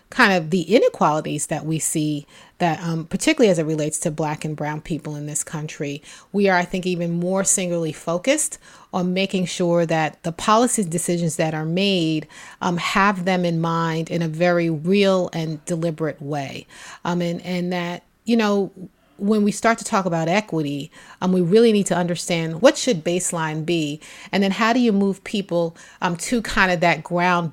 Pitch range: 165-195 Hz